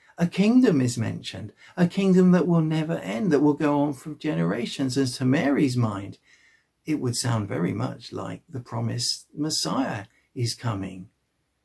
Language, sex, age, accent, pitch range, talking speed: English, male, 50-69, British, 110-160 Hz, 160 wpm